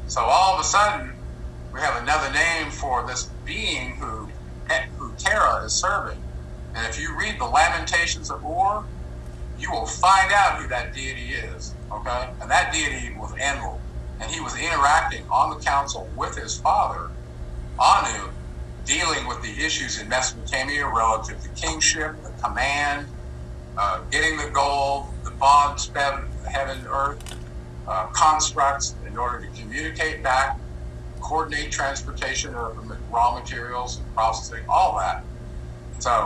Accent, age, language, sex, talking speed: American, 50-69, English, male, 140 wpm